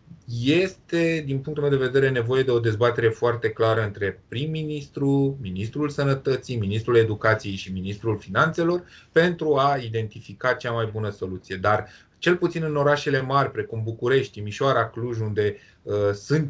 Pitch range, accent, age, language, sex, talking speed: 105-140 Hz, native, 20-39, Romanian, male, 150 wpm